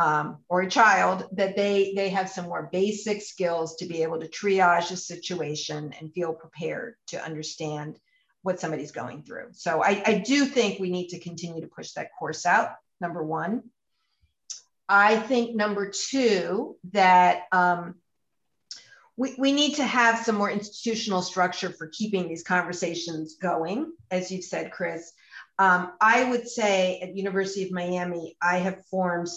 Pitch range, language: 175-215 Hz, English